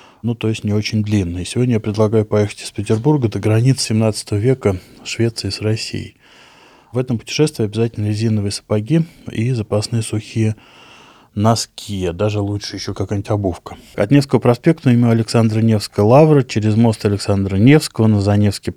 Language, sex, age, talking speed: Russian, male, 20-39, 155 wpm